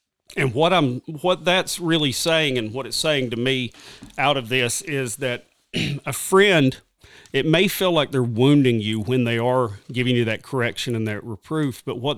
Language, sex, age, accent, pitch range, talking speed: English, male, 40-59, American, 120-155 Hz, 190 wpm